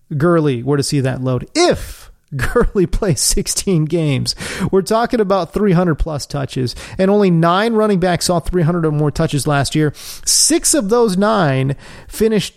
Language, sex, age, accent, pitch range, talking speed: English, male, 30-49, American, 145-200 Hz, 160 wpm